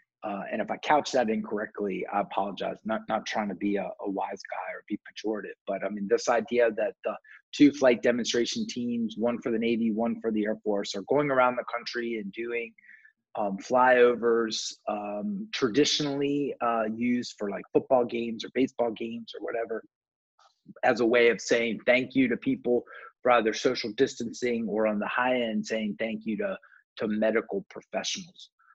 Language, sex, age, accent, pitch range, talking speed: English, male, 30-49, American, 115-150 Hz, 185 wpm